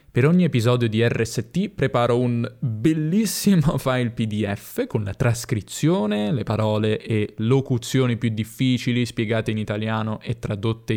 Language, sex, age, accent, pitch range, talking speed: Italian, male, 10-29, native, 105-140 Hz, 130 wpm